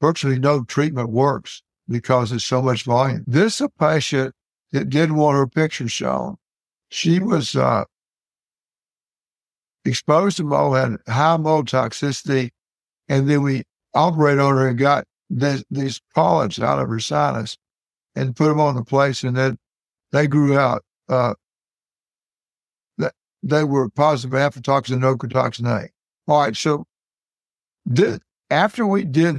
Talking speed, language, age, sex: 145 wpm, English, 60-79, male